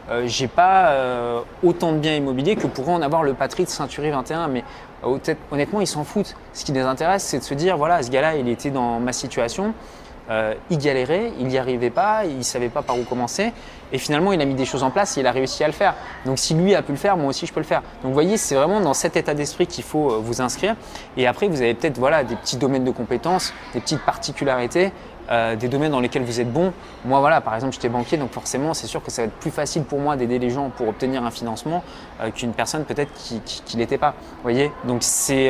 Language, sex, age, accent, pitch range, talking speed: French, male, 20-39, French, 125-170 Hz, 260 wpm